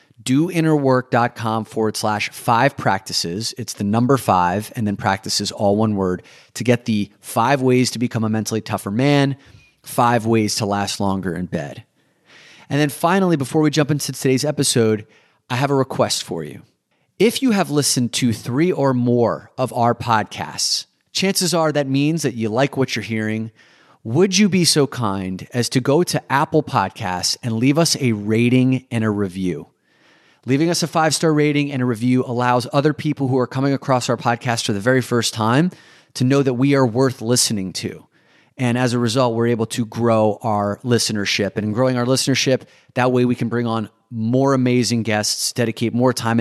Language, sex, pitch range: English, male, 105-135 Hz